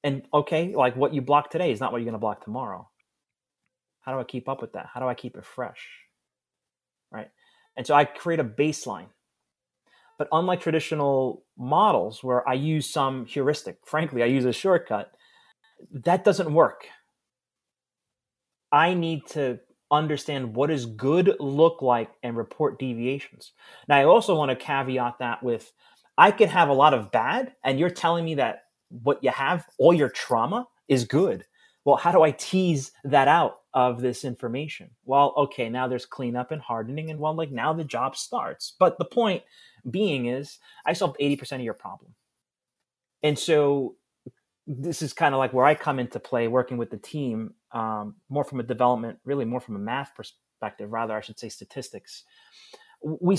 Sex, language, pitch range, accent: male, English, 125-165 Hz, American